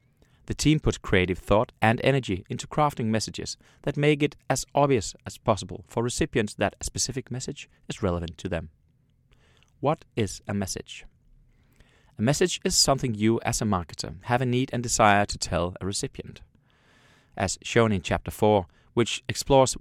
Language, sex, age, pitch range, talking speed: English, male, 30-49, 95-130 Hz, 165 wpm